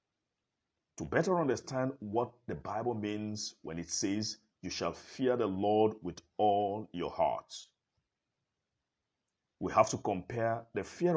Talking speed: 135 wpm